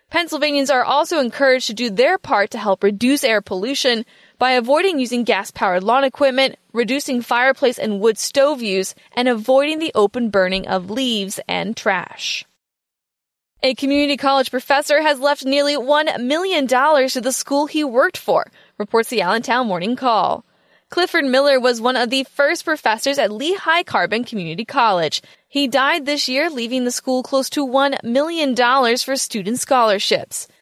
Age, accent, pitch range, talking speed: 20-39, American, 230-285 Hz, 160 wpm